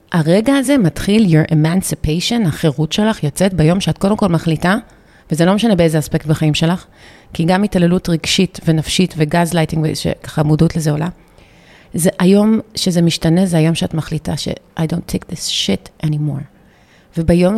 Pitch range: 160-195 Hz